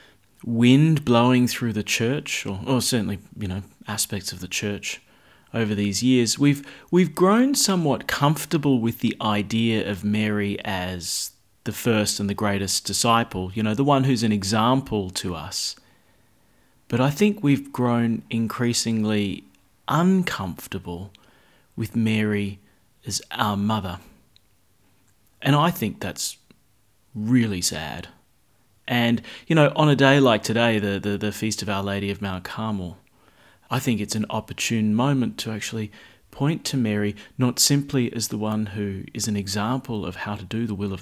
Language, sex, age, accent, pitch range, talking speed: English, male, 30-49, Australian, 100-125 Hz, 155 wpm